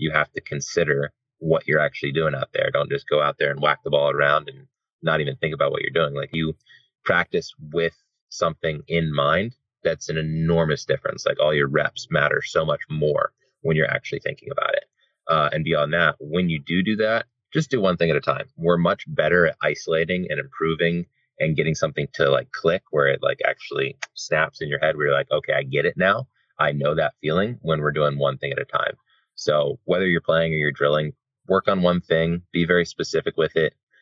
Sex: male